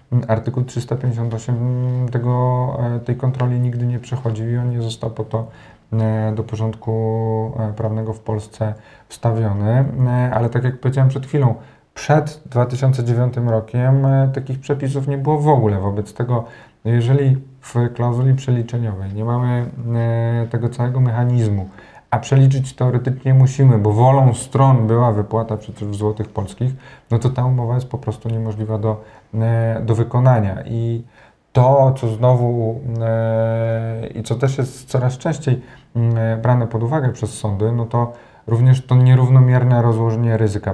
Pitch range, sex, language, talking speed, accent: 115-130 Hz, male, Polish, 135 wpm, native